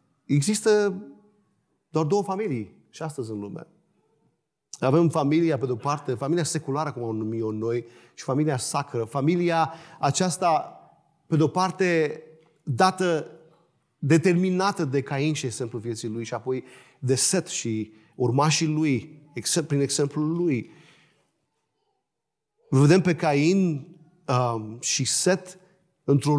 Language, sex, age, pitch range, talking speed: Romanian, male, 40-59, 135-175 Hz, 120 wpm